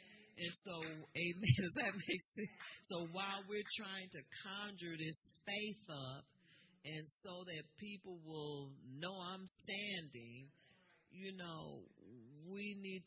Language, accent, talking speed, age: English, American, 130 wpm, 40-59